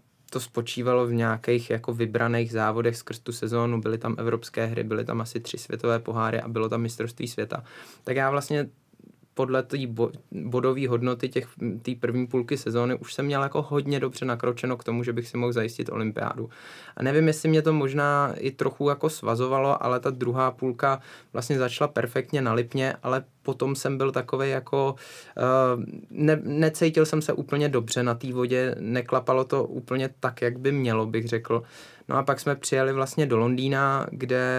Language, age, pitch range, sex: Czech, 20-39, 120-135 Hz, male